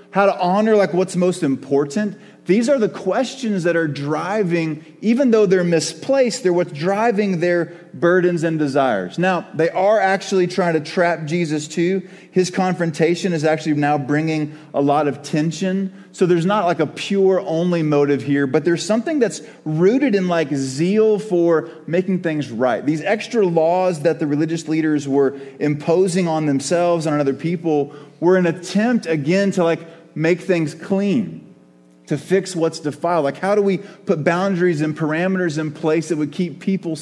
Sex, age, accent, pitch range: male, 30-49, American, 155-190 Hz